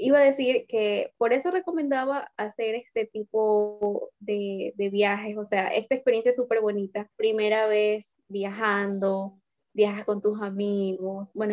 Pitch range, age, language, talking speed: 200-235 Hz, 10-29, Spanish, 145 wpm